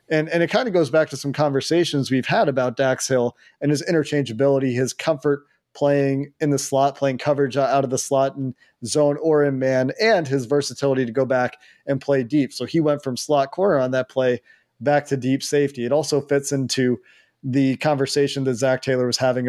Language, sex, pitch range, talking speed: English, male, 130-145 Hz, 210 wpm